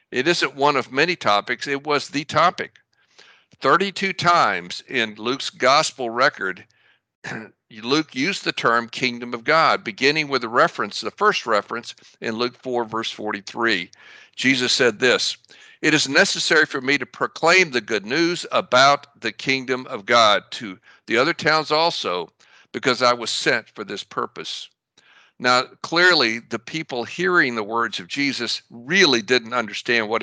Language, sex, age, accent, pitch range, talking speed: English, male, 60-79, American, 120-160 Hz, 155 wpm